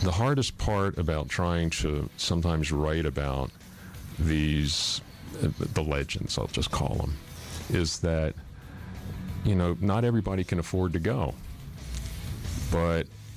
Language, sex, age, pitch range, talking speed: Bulgarian, male, 40-59, 80-95 Hz, 120 wpm